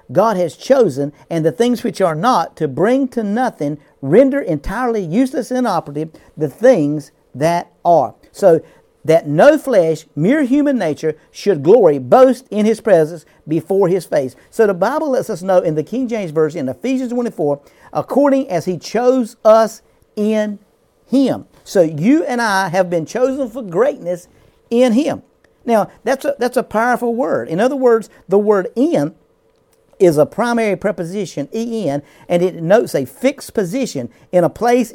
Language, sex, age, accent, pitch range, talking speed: English, male, 50-69, American, 165-245 Hz, 170 wpm